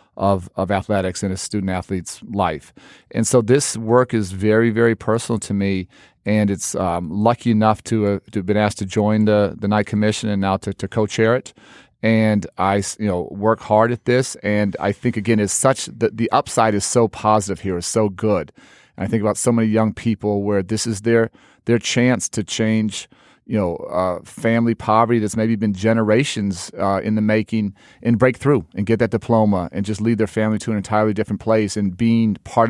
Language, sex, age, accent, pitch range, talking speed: English, male, 40-59, American, 100-115 Hz, 210 wpm